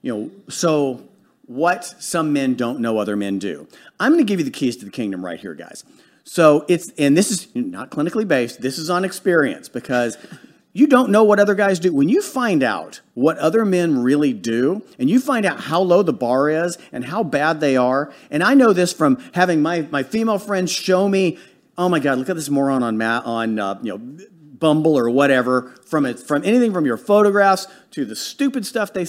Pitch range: 135-205 Hz